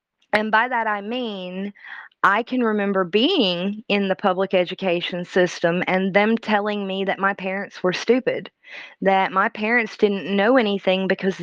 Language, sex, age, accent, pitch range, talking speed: English, female, 20-39, American, 190-245 Hz, 160 wpm